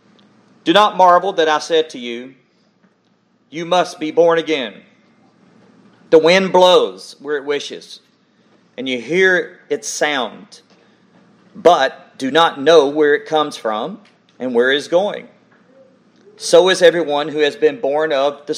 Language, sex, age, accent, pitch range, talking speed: English, male, 40-59, American, 150-220 Hz, 150 wpm